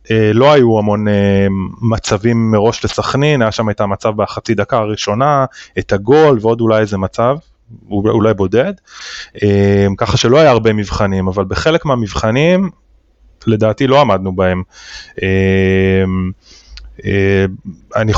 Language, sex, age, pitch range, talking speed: Hebrew, male, 20-39, 100-125 Hz, 110 wpm